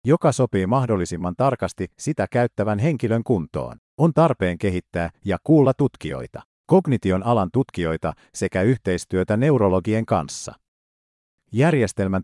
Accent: native